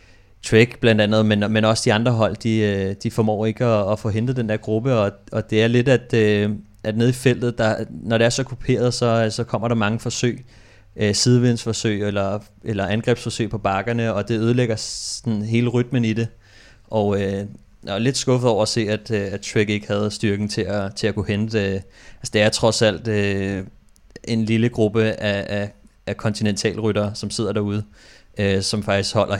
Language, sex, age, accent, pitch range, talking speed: Danish, male, 30-49, native, 105-115 Hz, 190 wpm